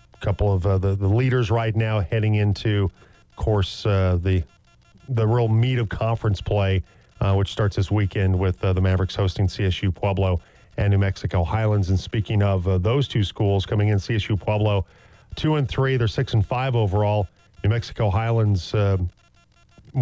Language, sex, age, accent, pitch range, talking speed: English, male, 40-59, American, 95-120 Hz, 175 wpm